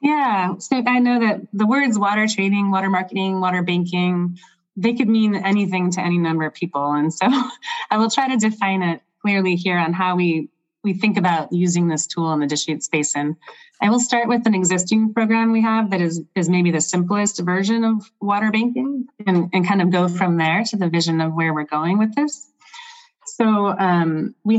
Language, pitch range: English, 160-210 Hz